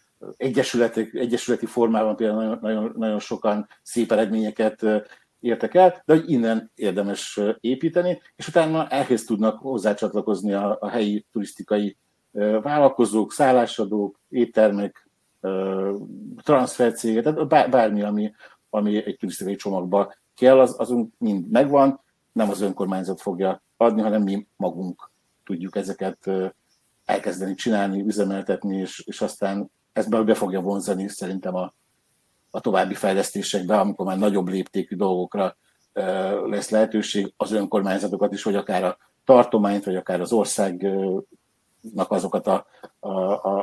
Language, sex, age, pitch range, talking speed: Hungarian, male, 50-69, 100-115 Hz, 120 wpm